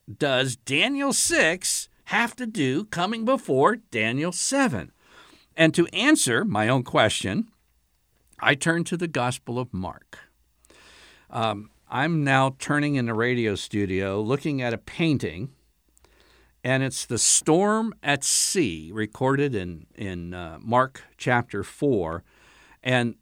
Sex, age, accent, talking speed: male, 60-79, American, 125 wpm